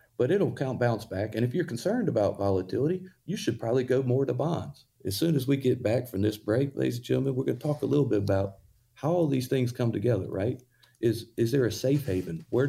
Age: 40-59